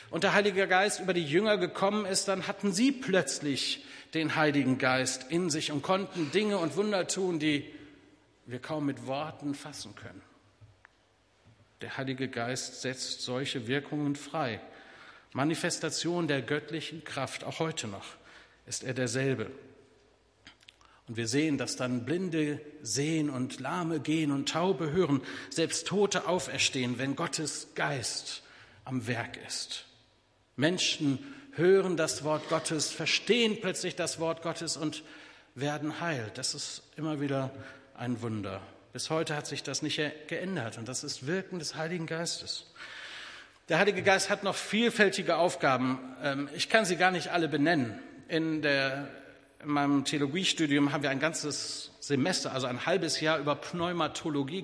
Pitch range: 130-170 Hz